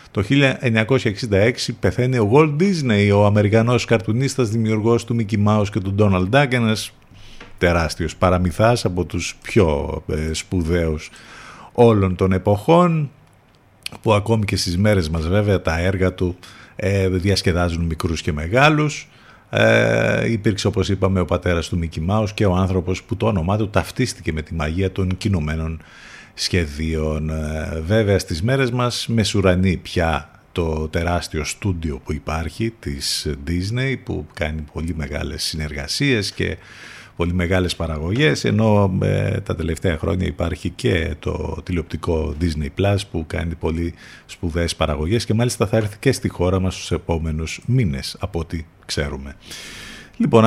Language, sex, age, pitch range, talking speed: Greek, male, 50-69, 85-110 Hz, 140 wpm